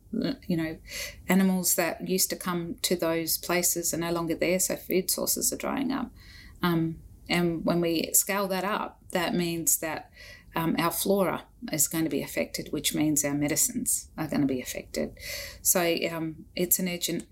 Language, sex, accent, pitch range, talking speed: English, female, Australian, 150-185 Hz, 180 wpm